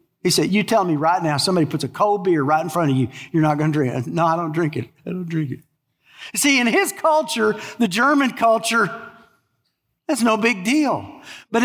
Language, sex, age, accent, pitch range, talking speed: English, male, 50-69, American, 155-240 Hz, 230 wpm